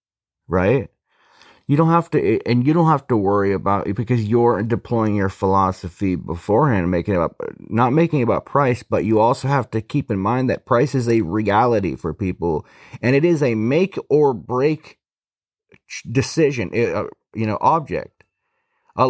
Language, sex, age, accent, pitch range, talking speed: English, male, 30-49, American, 100-135 Hz, 170 wpm